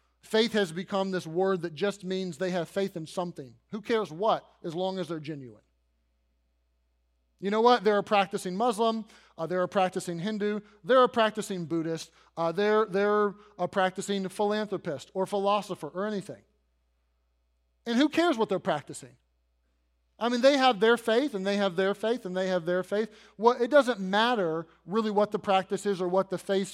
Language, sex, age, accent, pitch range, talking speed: English, male, 30-49, American, 170-215 Hz, 185 wpm